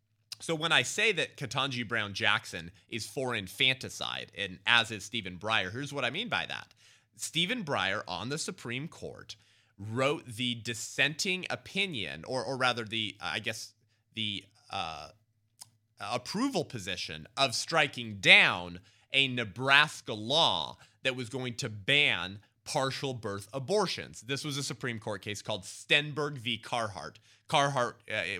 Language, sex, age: English, male, 30-49